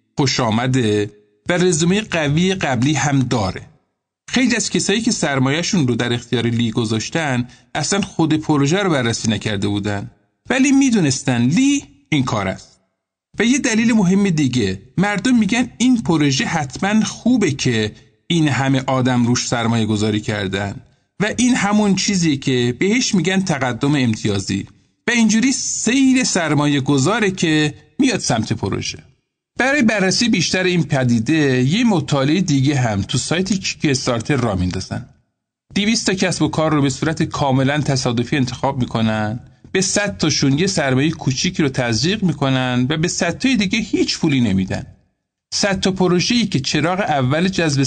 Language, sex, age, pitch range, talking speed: Persian, male, 50-69, 120-185 Hz, 150 wpm